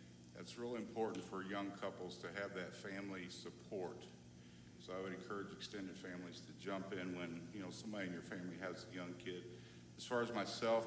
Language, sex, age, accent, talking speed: English, male, 50-69, American, 195 wpm